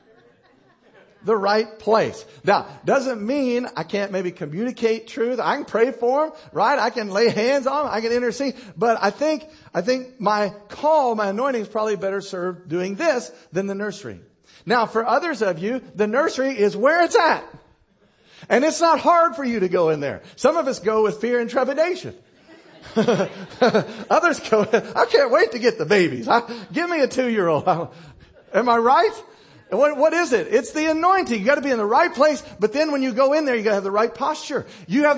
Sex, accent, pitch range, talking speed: male, American, 180-275 Hz, 205 wpm